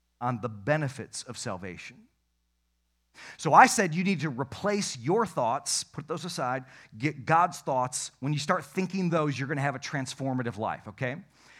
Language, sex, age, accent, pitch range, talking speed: English, male, 40-59, American, 115-170 Hz, 170 wpm